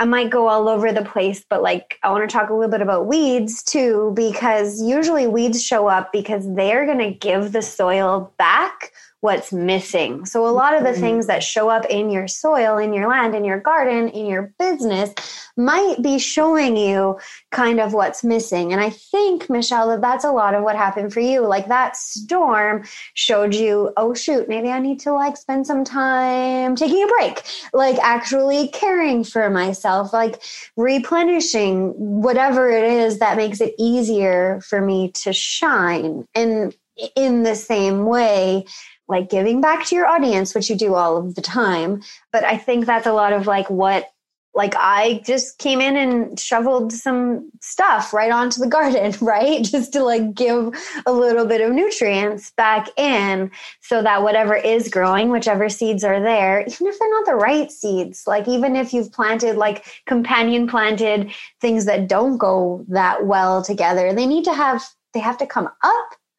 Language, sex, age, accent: English, female, 20-39, American